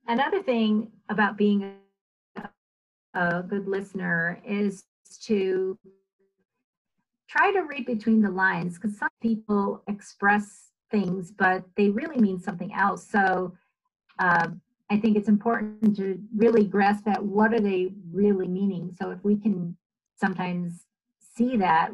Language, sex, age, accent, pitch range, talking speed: English, female, 50-69, American, 185-215 Hz, 135 wpm